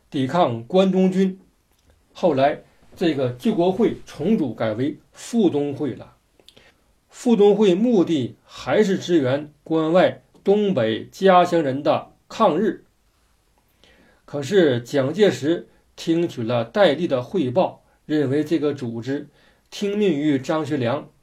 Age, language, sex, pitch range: 50-69, Chinese, male, 130-190 Hz